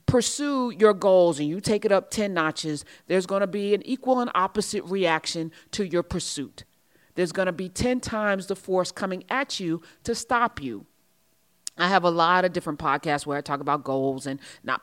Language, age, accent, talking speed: English, 30-49, American, 200 wpm